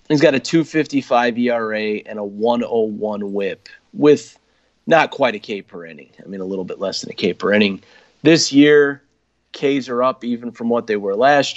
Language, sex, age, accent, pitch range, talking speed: English, male, 30-49, American, 115-140 Hz, 195 wpm